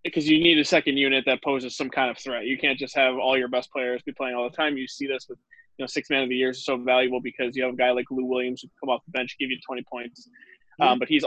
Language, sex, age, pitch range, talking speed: English, male, 20-39, 130-150 Hz, 315 wpm